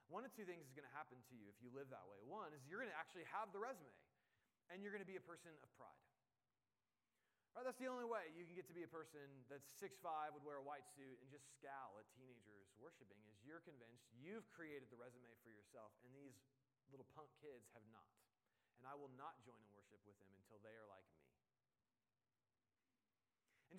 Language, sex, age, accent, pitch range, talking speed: English, male, 30-49, American, 120-160 Hz, 225 wpm